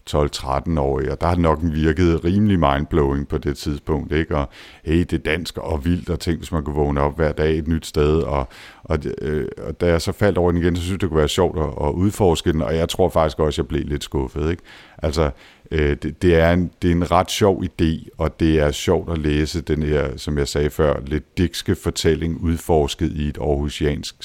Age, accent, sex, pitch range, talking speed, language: 50-69, native, male, 75-85 Hz, 235 wpm, Danish